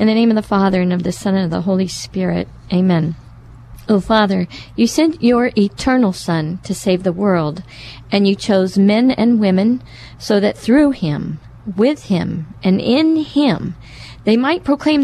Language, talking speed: English, 180 wpm